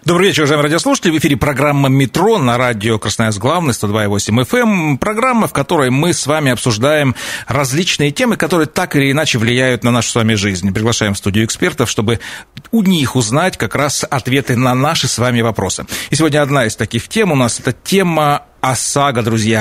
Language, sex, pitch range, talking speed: Russian, male, 115-150 Hz, 195 wpm